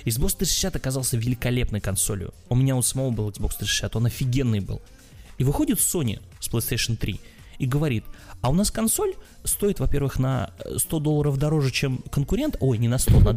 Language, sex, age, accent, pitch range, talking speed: Russian, male, 20-39, native, 110-140 Hz, 180 wpm